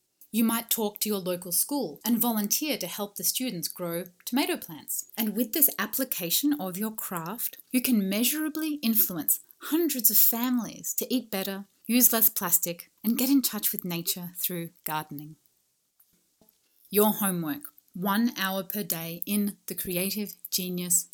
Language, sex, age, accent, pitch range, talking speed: English, female, 30-49, Australian, 180-240 Hz, 155 wpm